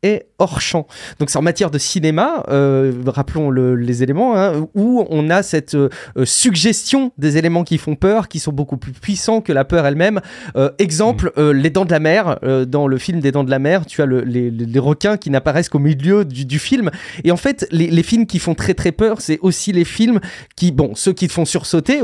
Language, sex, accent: French, male, French